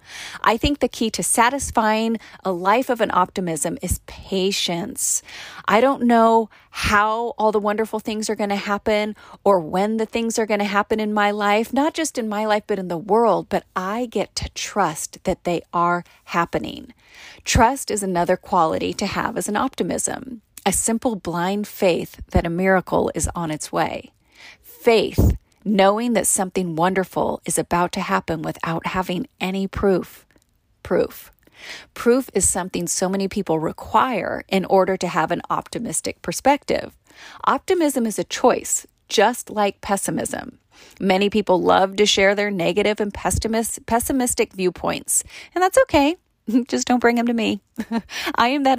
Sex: female